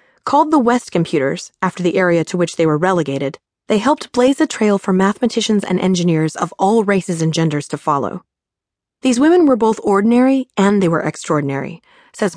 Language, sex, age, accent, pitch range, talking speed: English, female, 20-39, American, 170-225 Hz, 185 wpm